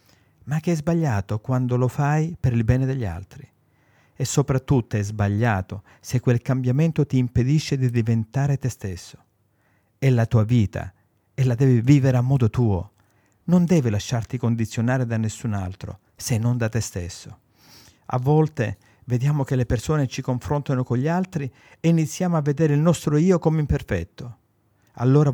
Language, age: Italian, 50-69